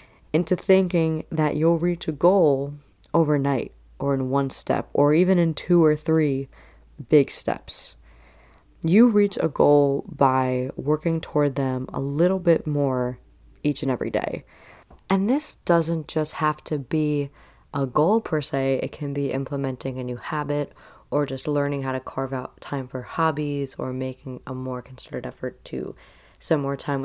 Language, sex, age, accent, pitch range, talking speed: English, female, 20-39, American, 130-160 Hz, 165 wpm